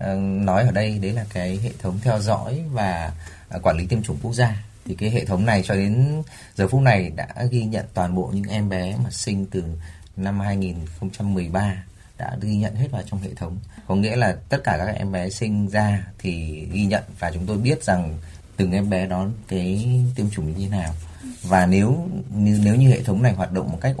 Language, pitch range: Vietnamese, 95-115 Hz